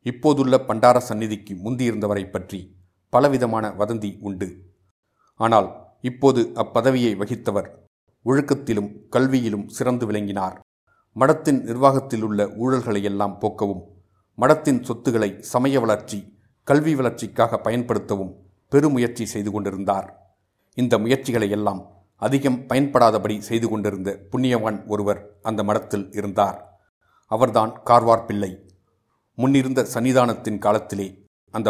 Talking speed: 90 wpm